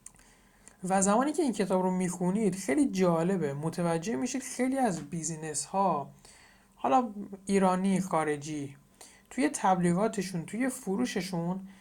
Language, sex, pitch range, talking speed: Persian, male, 165-215 Hz, 110 wpm